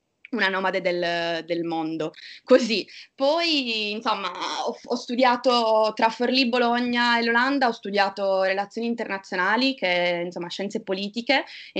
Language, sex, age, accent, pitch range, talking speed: Italian, female, 20-39, native, 190-225 Hz, 125 wpm